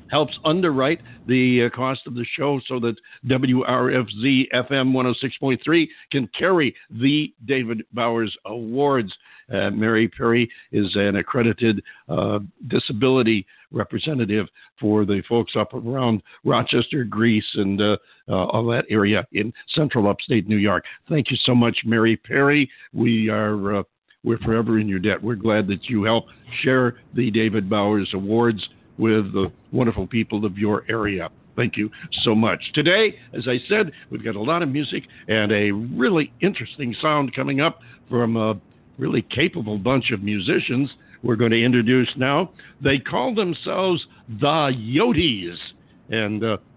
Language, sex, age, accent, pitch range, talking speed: English, male, 60-79, American, 110-130 Hz, 150 wpm